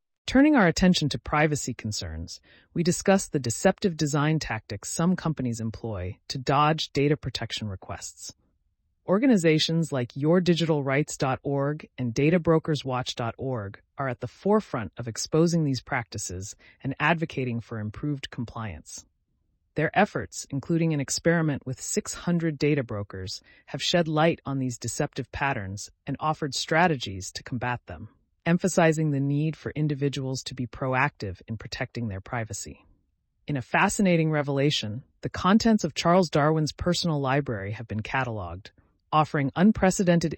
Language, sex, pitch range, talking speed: English, female, 115-160 Hz, 130 wpm